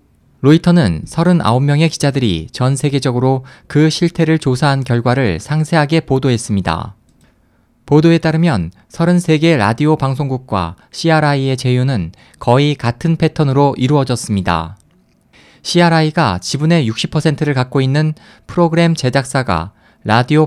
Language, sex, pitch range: Korean, male, 120-160 Hz